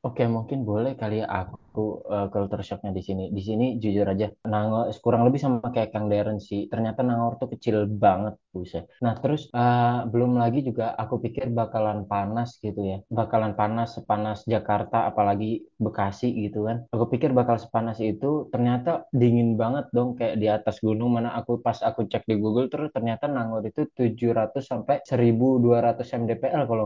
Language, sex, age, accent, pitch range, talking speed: Indonesian, male, 20-39, native, 110-125 Hz, 170 wpm